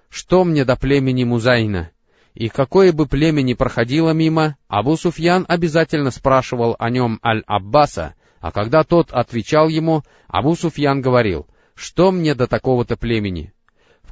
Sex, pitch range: male, 115-155 Hz